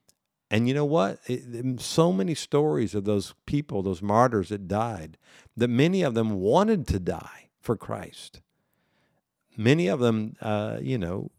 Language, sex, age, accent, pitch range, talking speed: English, male, 50-69, American, 110-140 Hz, 165 wpm